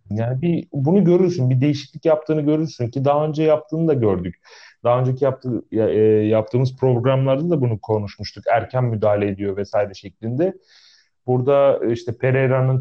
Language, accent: Turkish, native